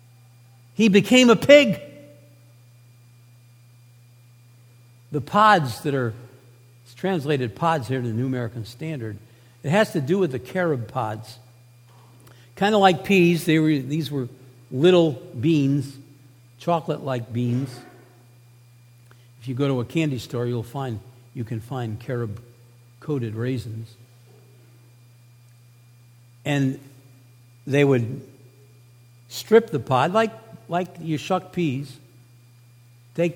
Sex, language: male, English